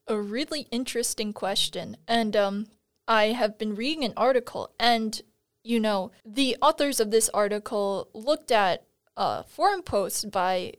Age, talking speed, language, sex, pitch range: 20-39, 145 wpm, English, female, 200-245 Hz